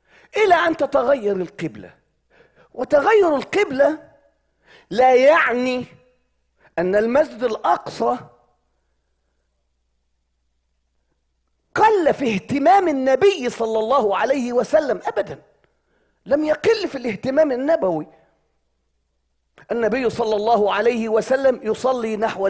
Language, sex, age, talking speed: English, male, 40-59, 85 wpm